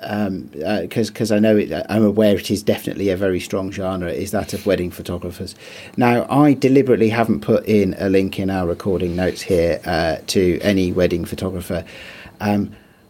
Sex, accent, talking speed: male, British, 180 wpm